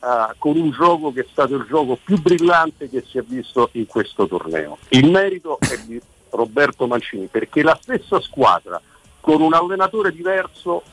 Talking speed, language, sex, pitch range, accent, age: 170 wpm, Italian, male, 115-165 Hz, native, 50-69